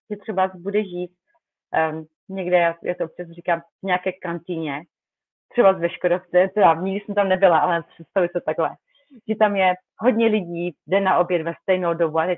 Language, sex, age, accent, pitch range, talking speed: Czech, female, 30-49, native, 175-205 Hz, 190 wpm